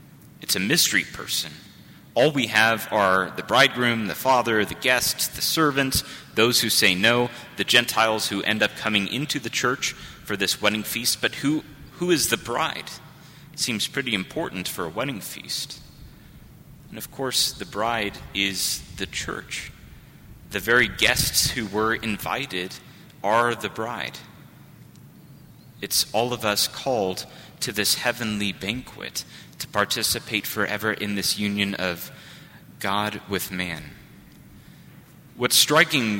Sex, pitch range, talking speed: male, 100-140 Hz, 140 wpm